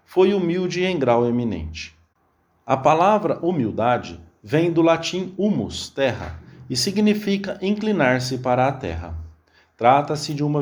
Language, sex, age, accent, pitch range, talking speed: English, male, 40-59, Brazilian, 120-170 Hz, 130 wpm